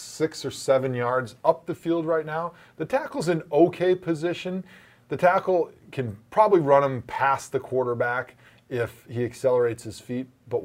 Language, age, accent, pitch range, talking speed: English, 30-49, American, 120-165 Hz, 165 wpm